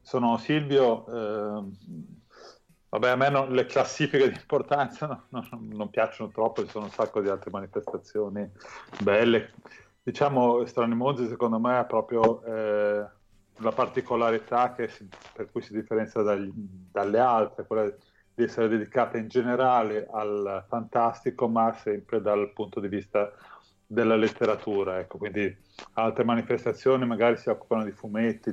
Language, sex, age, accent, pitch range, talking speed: Italian, male, 30-49, native, 105-125 Hz, 135 wpm